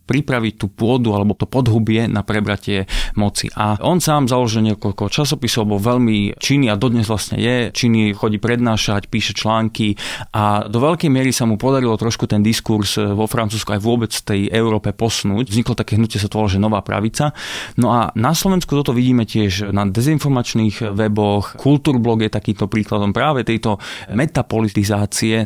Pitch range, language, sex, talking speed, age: 105-125 Hz, Slovak, male, 165 wpm, 20-39